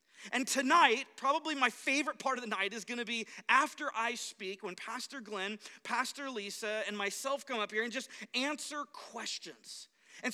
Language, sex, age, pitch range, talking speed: English, male, 30-49, 215-265 Hz, 180 wpm